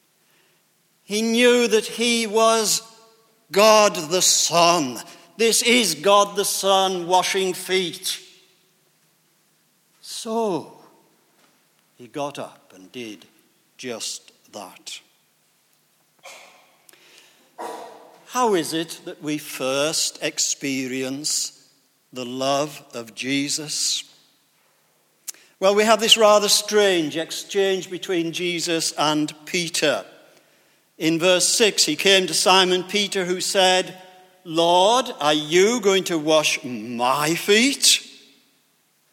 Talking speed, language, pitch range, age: 95 wpm, English, 165-220 Hz, 60-79